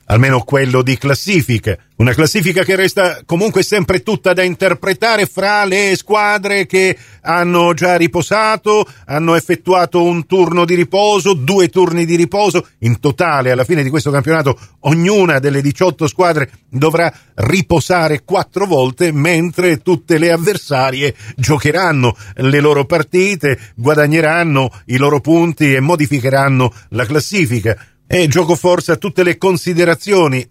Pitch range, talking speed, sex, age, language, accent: 135-180 Hz, 130 wpm, male, 50-69, Italian, native